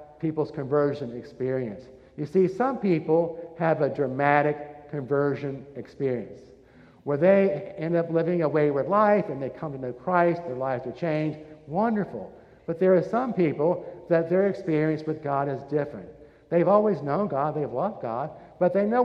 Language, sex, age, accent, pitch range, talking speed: English, male, 50-69, American, 140-180 Hz, 165 wpm